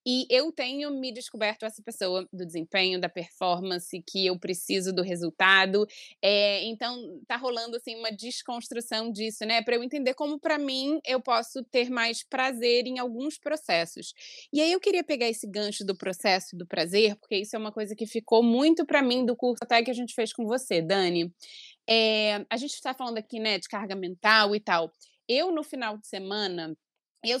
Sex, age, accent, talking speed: female, 20-39, Brazilian, 195 wpm